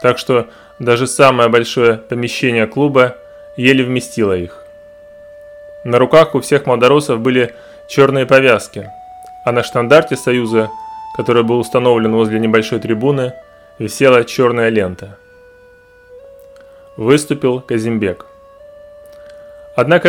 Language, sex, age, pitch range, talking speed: Russian, male, 20-39, 115-155 Hz, 100 wpm